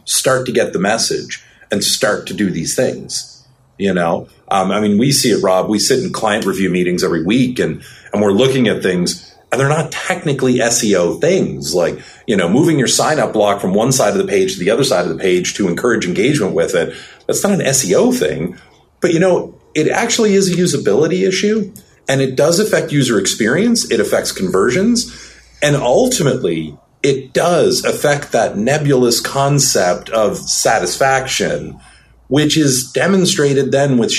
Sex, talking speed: male, 180 wpm